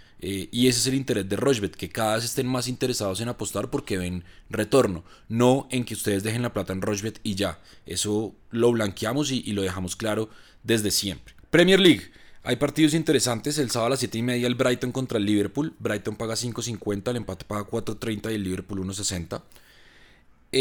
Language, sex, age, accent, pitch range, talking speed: Spanish, male, 20-39, Colombian, 105-130 Hz, 195 wpm